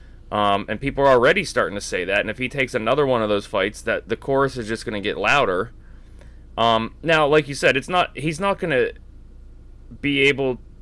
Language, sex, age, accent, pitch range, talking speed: English, male, 30-49, American, 100-135 Hz, 220 wpm